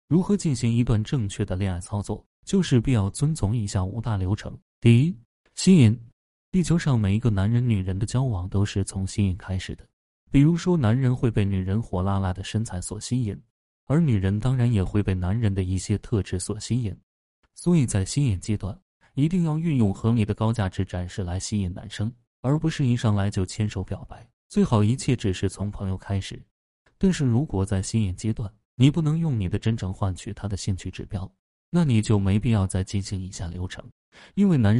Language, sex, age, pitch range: Chinese, male, 20-39, 95-125 Hz